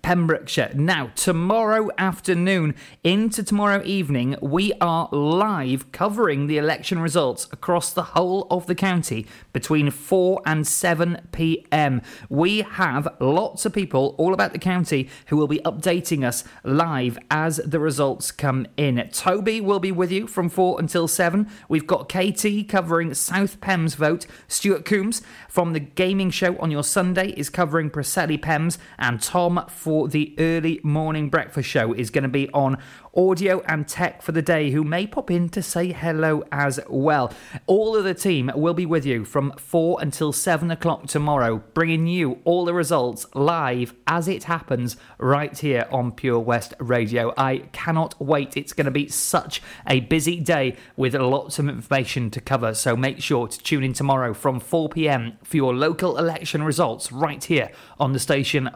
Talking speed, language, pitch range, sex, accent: 170 wpm, English, 140-180 Hz, male, British